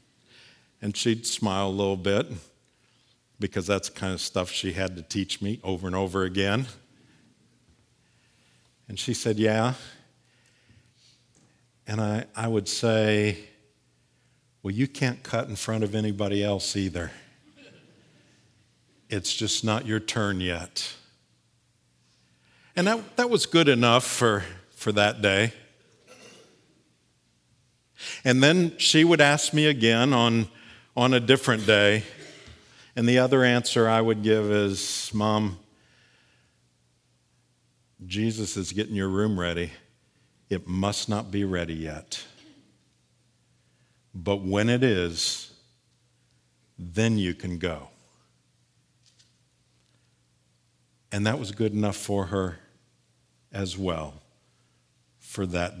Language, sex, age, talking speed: English, male, 60-79, 115 wpm